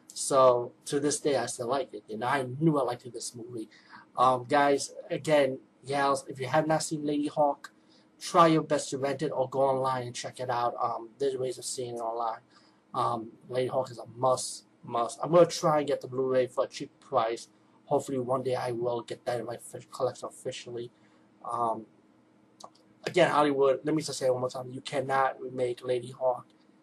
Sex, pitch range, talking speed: male, 125-160 Hz, 210 wpm